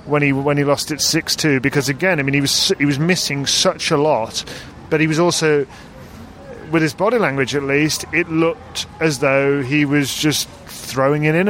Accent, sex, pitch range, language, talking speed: British, male, 130-155 Hz, English, 205 wpm